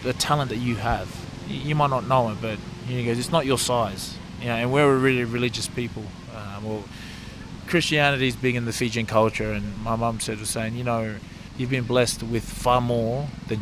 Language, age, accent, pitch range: English, 20-39, Australian, 110-145 Hz